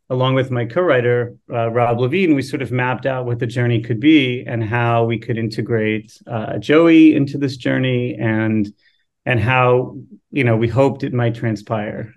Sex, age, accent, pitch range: male, 40-59, American, 115-135 Hz